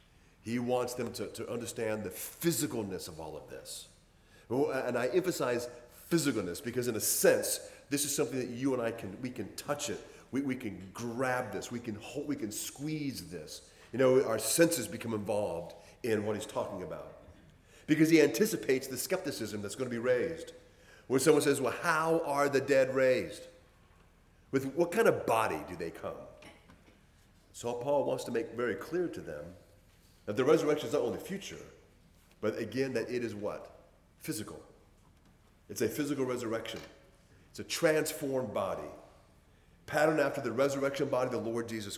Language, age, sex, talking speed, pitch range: English, 40-59, male, 175 wpm, 110-145 Hz